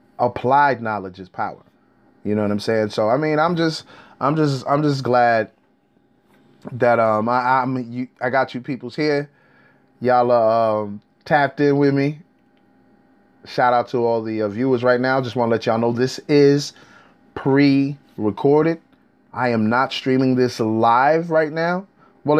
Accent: American